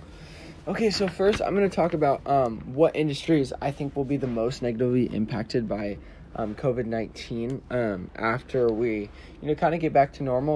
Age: 20-39